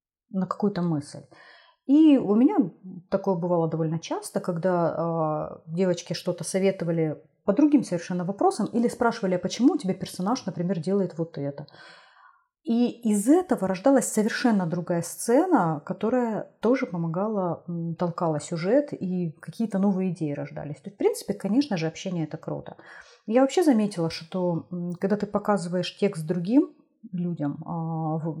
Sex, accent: female, native